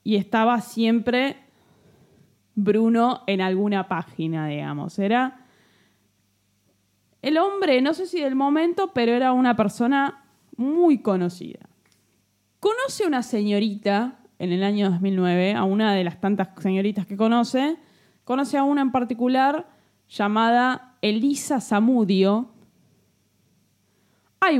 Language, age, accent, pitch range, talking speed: Spanish, 10-29, Argentinian, 180-235 Hz, 115 wpm